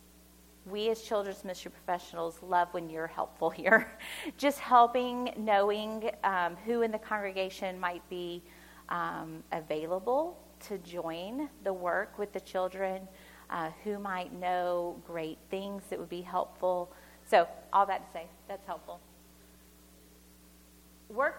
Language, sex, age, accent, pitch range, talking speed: English, female, 40-59, American, 175-255 Hz, 130 wpm